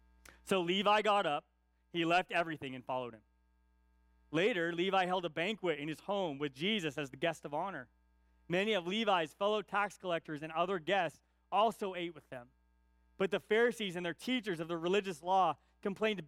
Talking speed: 180 wpm